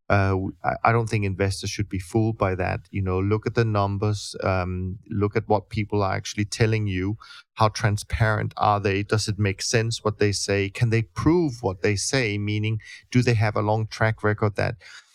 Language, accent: English, German